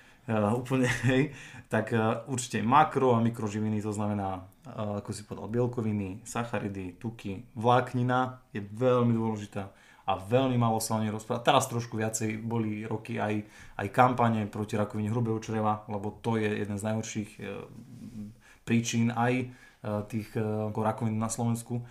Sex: male